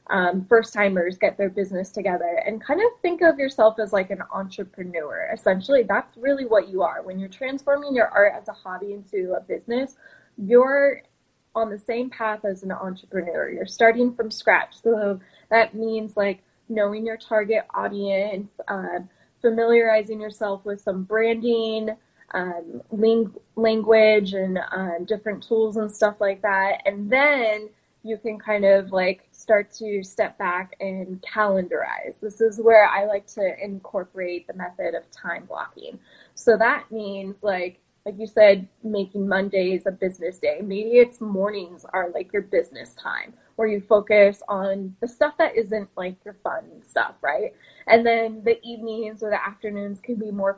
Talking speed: 165 wpm